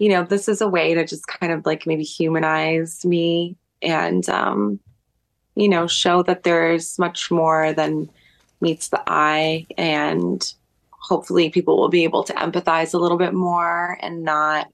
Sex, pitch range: female, 150-170 Hz